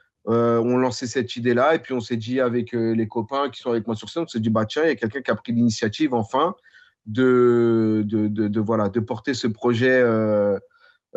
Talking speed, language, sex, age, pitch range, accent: 230 wpm, French, male, 30-49, 115-145 Hz, French